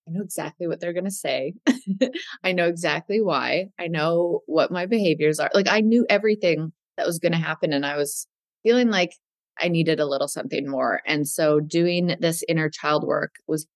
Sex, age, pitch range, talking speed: female, 20-39, 150-180 Hz, 195 wpm